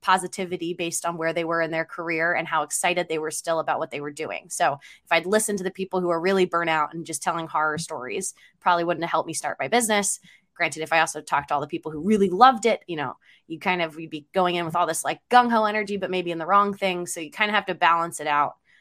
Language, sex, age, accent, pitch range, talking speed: English, female, 20-39, American, 160-185 Hz, 285 wpm